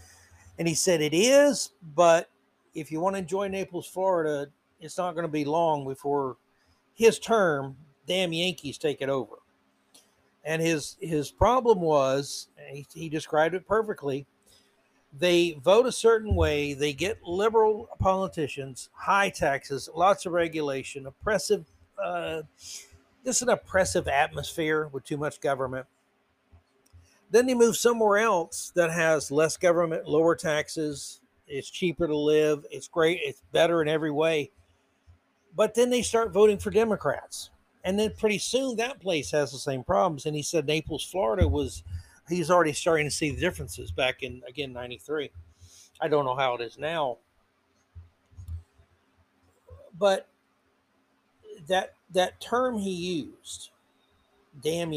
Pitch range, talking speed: 120-180 Hz, 145 wpm